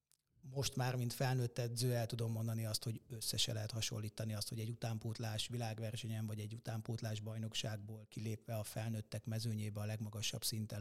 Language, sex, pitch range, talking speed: Hungarian, male, 110-125 Hz, 160 wpm